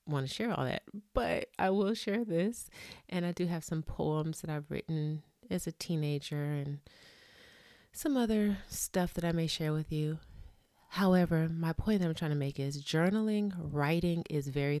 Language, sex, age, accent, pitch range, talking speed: English, female, 30-49, American, 140-165 Hz, 180 wpm